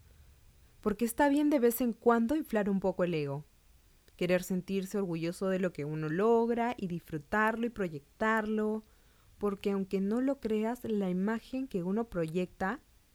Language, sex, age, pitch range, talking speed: Spanish, female, 20-39, 175-225 Hz, 155 wpm